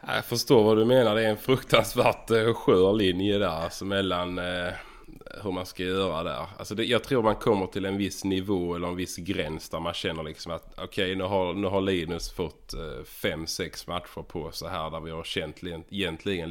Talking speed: 220 wpm